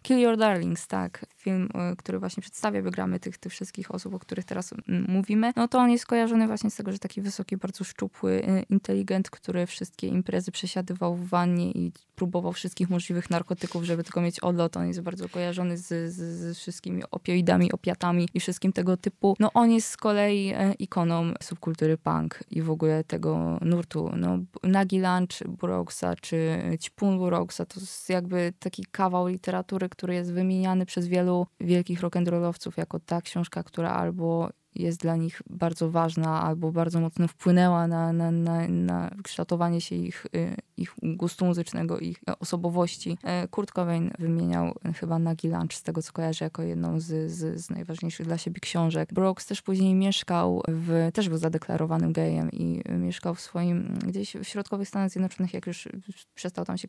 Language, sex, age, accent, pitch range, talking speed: Polish, female, 20-39, native, 165-185 Hz, 175 wpm